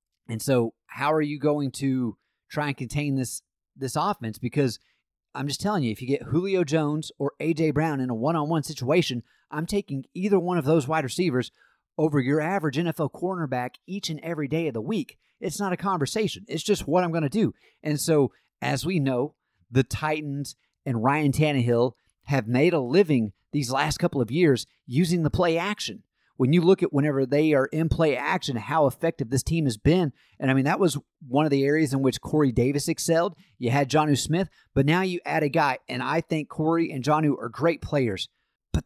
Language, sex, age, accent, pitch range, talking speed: English, male, 30-49, American, 135-170 Hz, 205 wpm